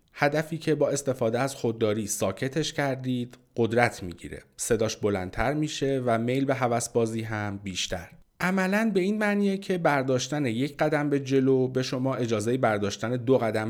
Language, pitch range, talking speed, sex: Persian, 110-140 Hz, 155 wpm, male